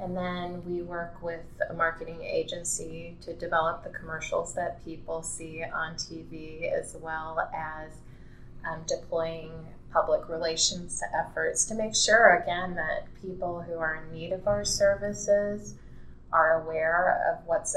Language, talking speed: English, 140 wpm